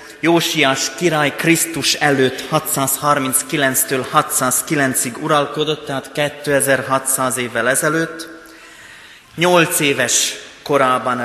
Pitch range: 130-150 Hz